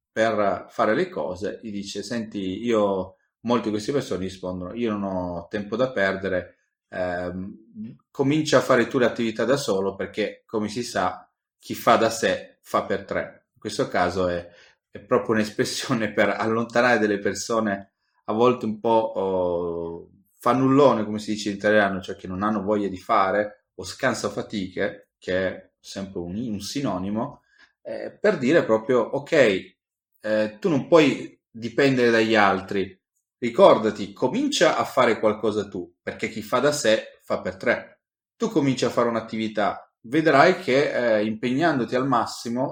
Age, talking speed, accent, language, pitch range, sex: 30-49, 160 wpm, native, Italian, 95-120 Hz, male